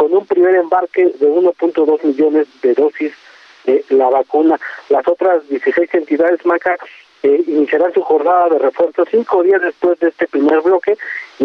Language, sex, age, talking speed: Spanish, male, 40-59, 160 wpm